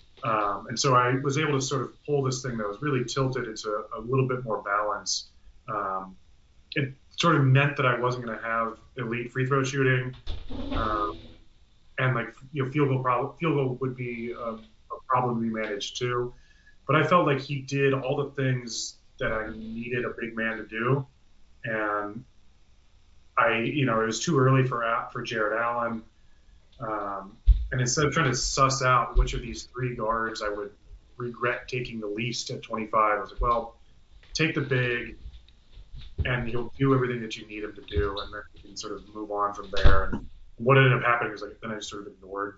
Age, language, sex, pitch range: 30-49, English, male, 105-135 Hz